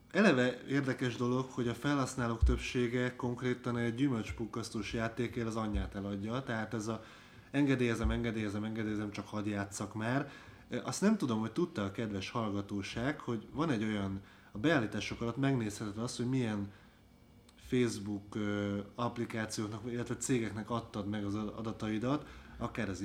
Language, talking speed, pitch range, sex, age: Hungarian, 135 wpm, 105-125 Hz, male, 20-39